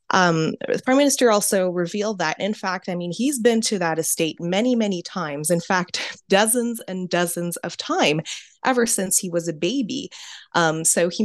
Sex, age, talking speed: female, 20-39, 185 wpm